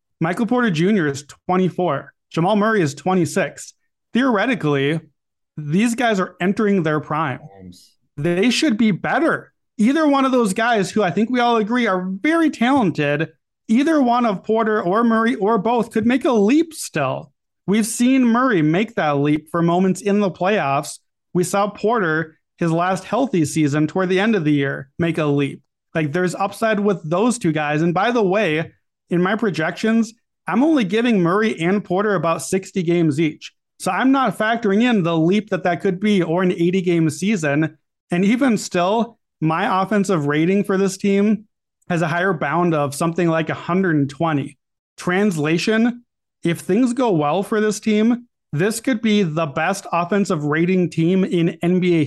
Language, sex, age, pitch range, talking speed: English, male, 30-49, 160-220 Hz, 170 wpm